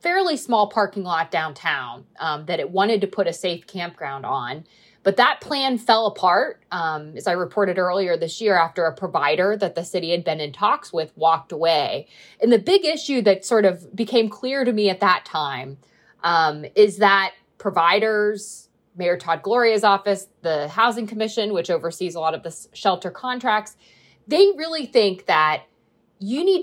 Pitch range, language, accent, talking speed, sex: 170-230 Hz, English, American, 180 wpm, female